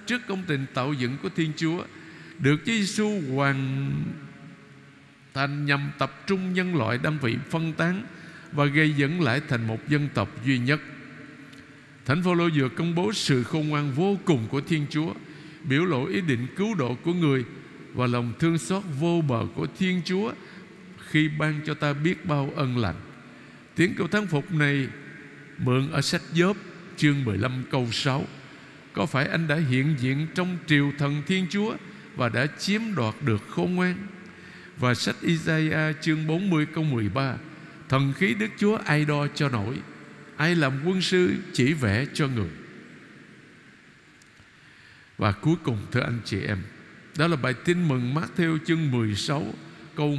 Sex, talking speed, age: male, 170 wpm, 60-79